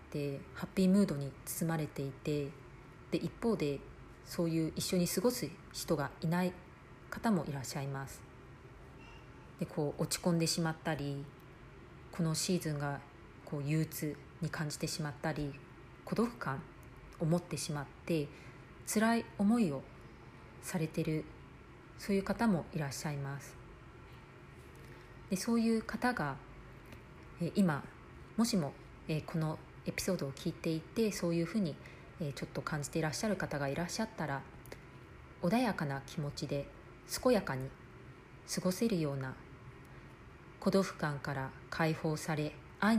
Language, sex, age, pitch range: Japanese, female, 40-59, 140-180 Hz